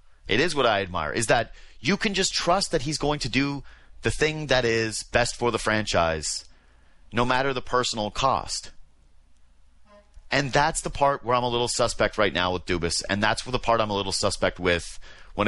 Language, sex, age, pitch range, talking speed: English, male, 30-49, 90-130 Hz, 200 wpm